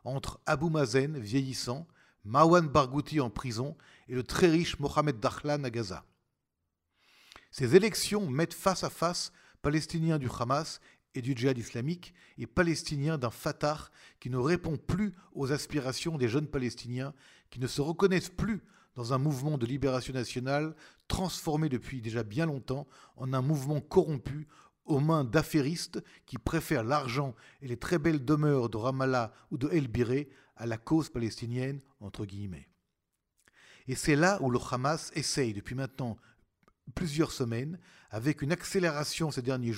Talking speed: 150 wpm